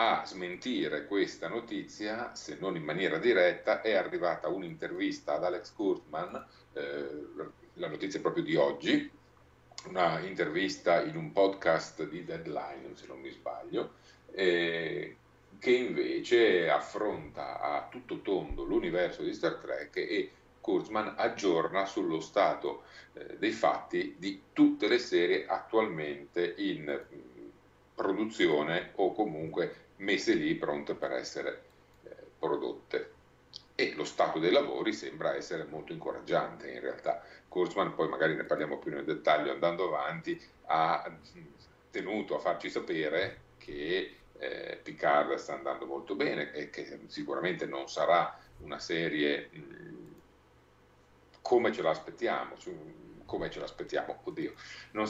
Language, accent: Italian, native